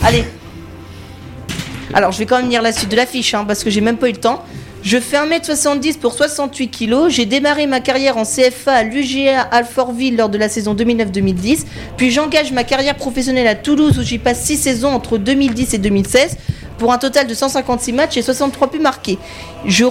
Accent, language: French, French